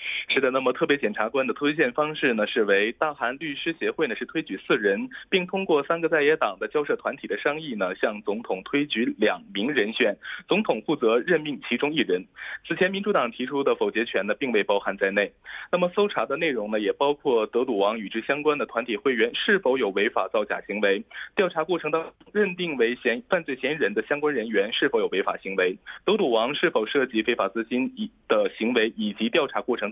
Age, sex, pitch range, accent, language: 20-39, male, 125-200 Hz, Chinese, Korean